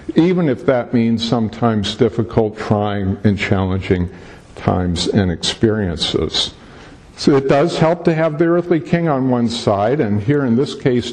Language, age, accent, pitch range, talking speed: English, 50-69, American, 105-150 Hz, 155 wpm